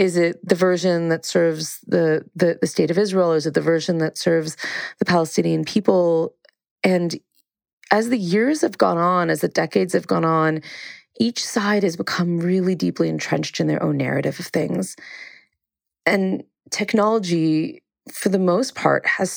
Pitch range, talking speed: 155-185 Hz, 170 wpm